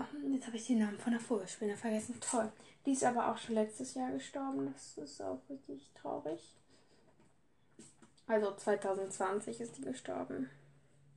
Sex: female